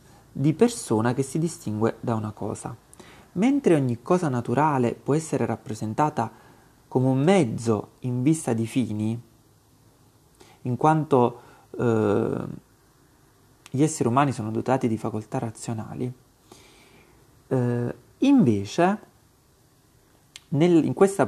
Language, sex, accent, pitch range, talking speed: Italian, male, native, 115-145 Hz, 105 wpm